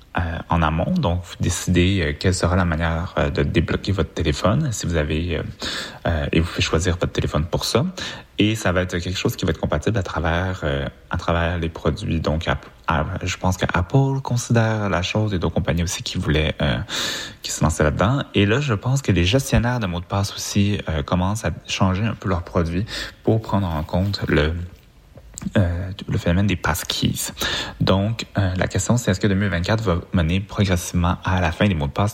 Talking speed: 220 wpm